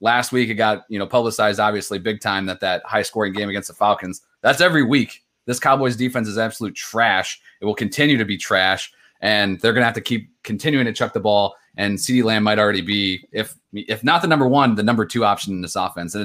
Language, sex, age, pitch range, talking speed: English, male, 30-49, 100-125 Hz, 235 wpm